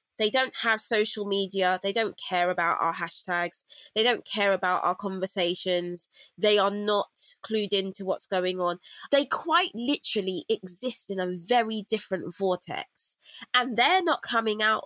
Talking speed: 160 wpm